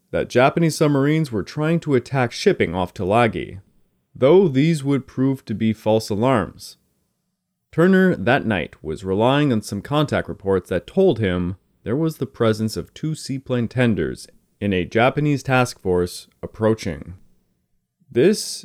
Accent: American